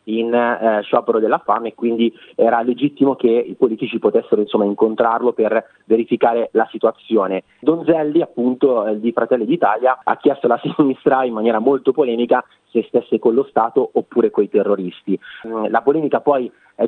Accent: native